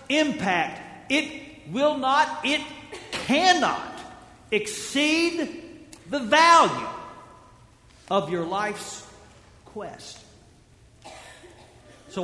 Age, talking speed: 50-69, 70 wpm